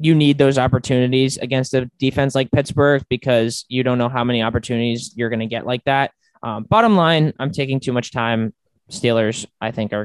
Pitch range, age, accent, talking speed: 115-145 Hz, 20-39, American, 205 wpm